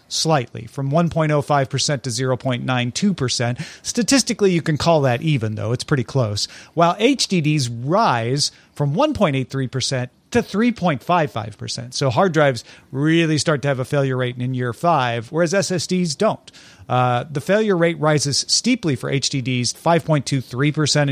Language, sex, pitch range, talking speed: English, male, 130-170 Hz, 135 wpm